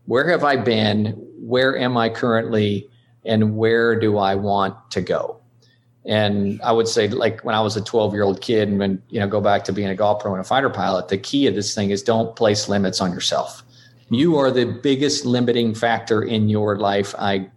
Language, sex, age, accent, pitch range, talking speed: English, male, 40-59, American, 105-130 Hz, 220 wpm